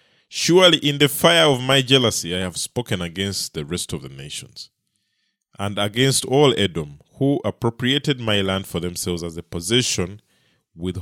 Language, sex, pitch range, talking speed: English, male, 95-145 Hz, 165 wpm